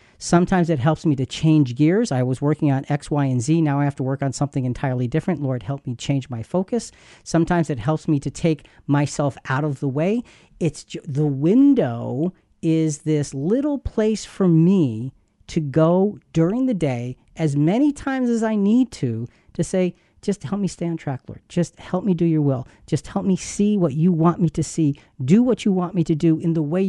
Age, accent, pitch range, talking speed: 40-59, American, 130-180 Hz, 220 wpm